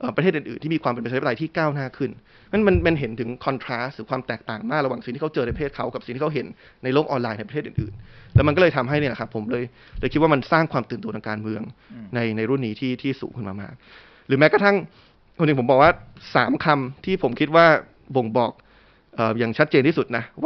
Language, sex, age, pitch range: Thai, male, 20-39, 120-155 Hz